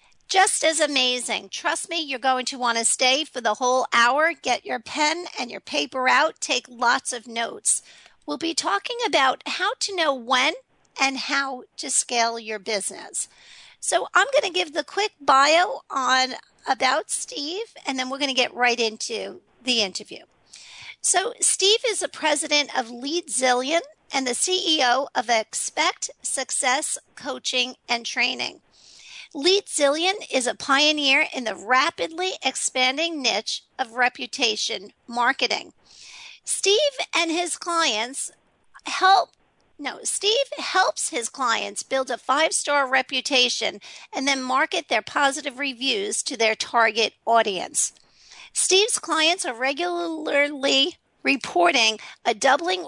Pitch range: 245-325 Hz